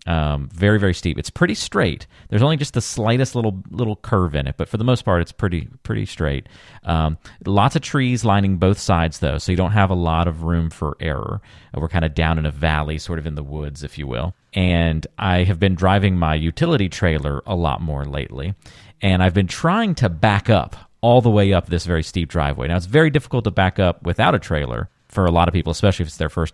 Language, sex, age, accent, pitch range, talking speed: English, male, 40-59, American, 85-110 Hz, 240 wpm